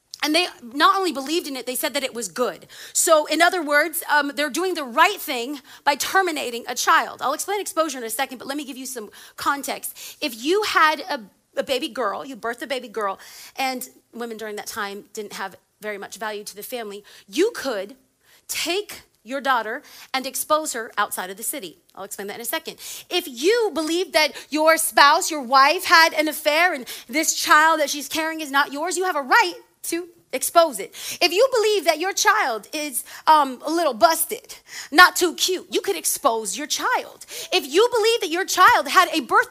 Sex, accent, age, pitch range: female, American, 30-49, 265-355 Hz